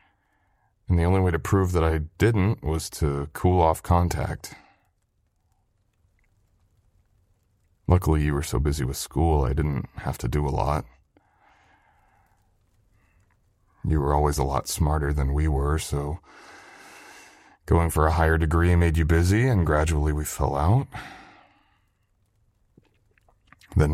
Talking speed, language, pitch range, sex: 130 wpm, English, 80-100 Hz, male